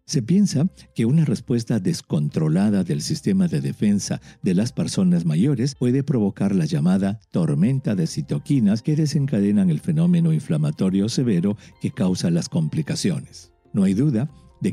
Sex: male